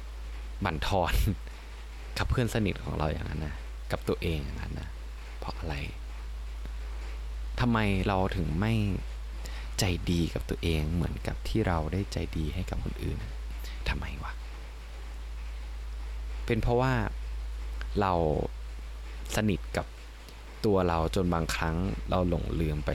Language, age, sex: Thai, 20-39, male